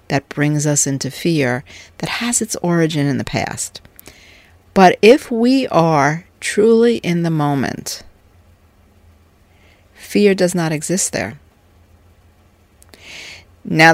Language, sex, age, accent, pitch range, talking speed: English, female, 50-69, American, 100-165 Hz, 110 wpm